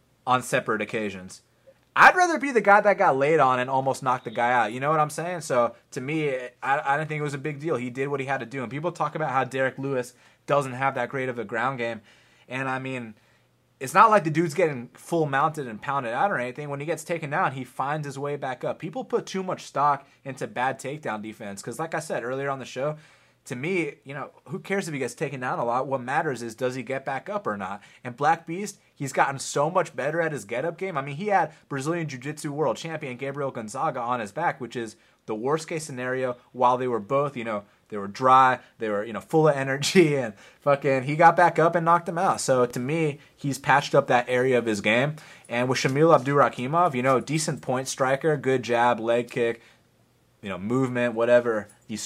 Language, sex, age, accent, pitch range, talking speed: English, male, 30-49, American, 125-155 Hz, 240 wpm